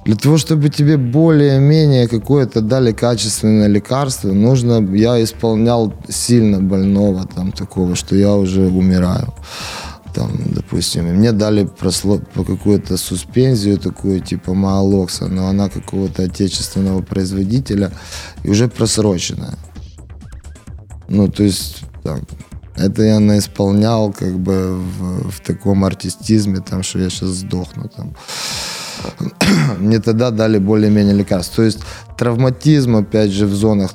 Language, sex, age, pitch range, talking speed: Ukrainian, male, 20-39, 90-105 Hz, 125 wpm